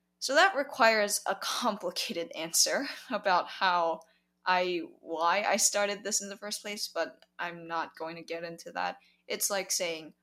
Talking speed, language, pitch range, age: 165 wpm, English, 165-205 Hz, 10-29